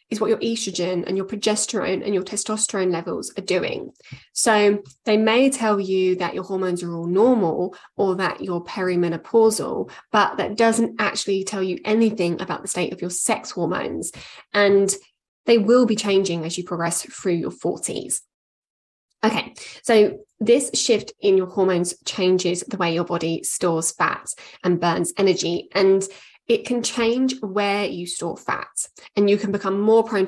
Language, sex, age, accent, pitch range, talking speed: English, female, 10-29, British, 180-220 Hz, 165 wpm